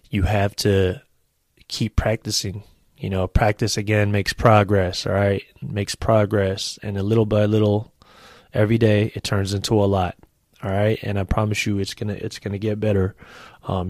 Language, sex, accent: English, male, American